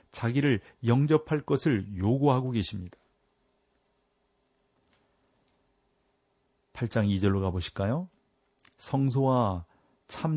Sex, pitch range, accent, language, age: male, 100-130 Hz, native, Korean, 40-59